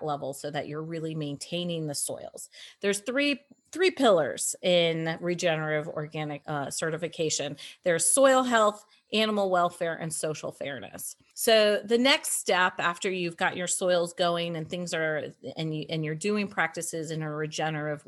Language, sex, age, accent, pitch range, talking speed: English, female, 30-49, American, 160-195 Hz, 155 wpm